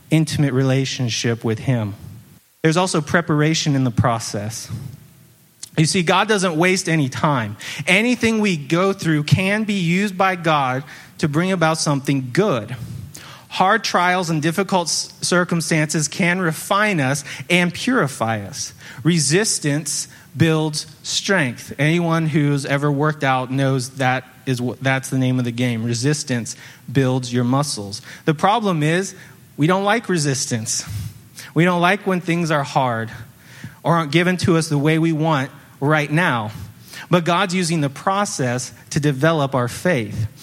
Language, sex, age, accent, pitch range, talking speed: English, male, 30-49, American, 130-170 Hz, 145 wpm